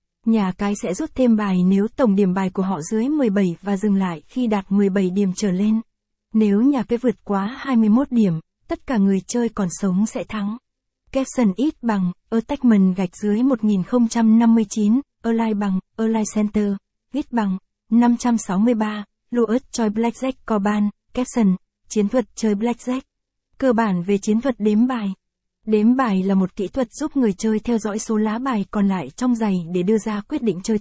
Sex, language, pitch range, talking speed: female, Vietnamese, 200-240 Hz, 180 wpm